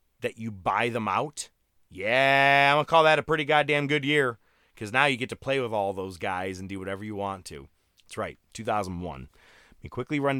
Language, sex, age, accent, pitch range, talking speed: English, male, 30-49, American, 90-115 Hz, 225 wpm